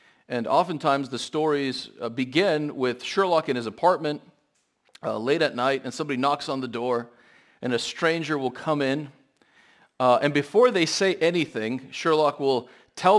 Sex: male